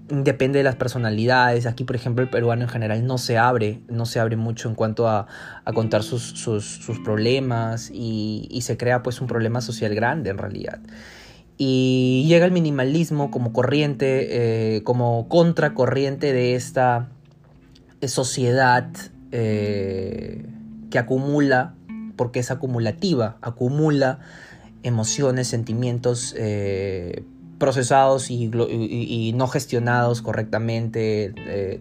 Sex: male